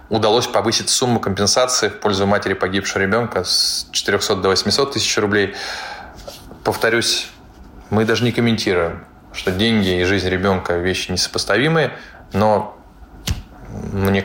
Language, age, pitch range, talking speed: Russian, 20-39, 95-110 Hz, 120 wpm